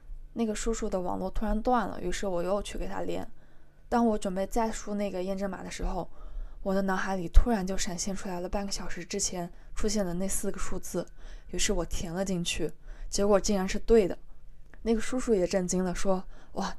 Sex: female